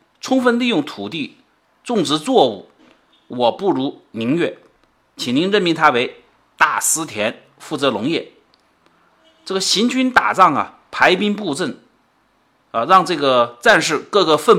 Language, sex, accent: Chinese, male, native